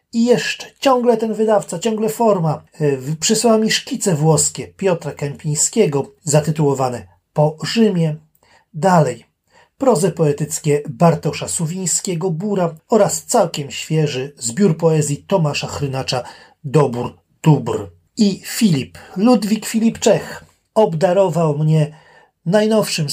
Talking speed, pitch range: 100 wpm, 145-205 Hz